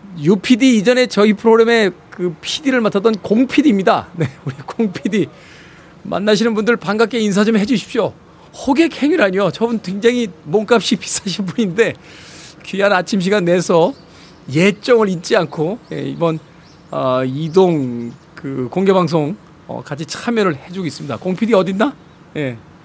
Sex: male